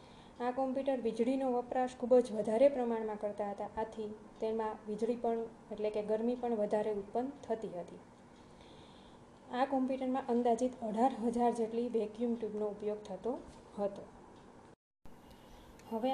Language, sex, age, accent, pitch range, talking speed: Gujarati, female, 20-39, native, 215-245 Hz, 125 wpm